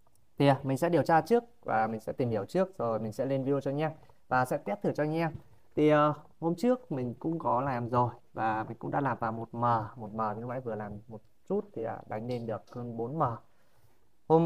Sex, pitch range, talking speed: male, 115-155 Hz, 255 wpm